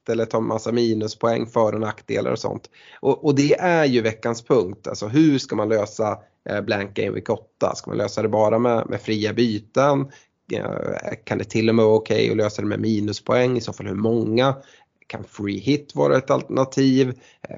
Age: 20-39